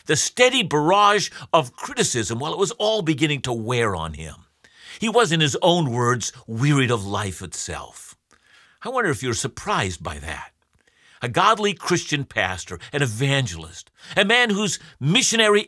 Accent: American